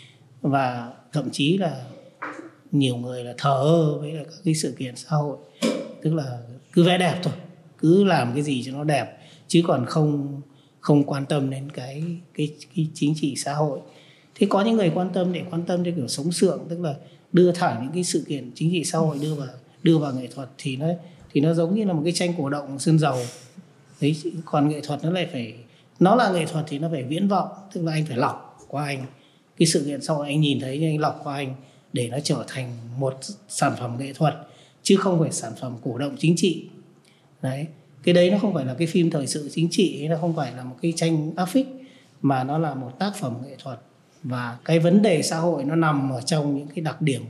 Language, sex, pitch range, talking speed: Vietnamese, male, 135-170 Hz, 230 wpm